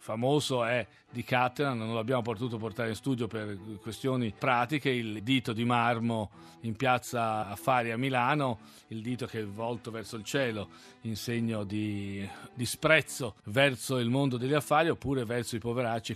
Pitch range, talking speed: 110-130 Hz, 165 wpm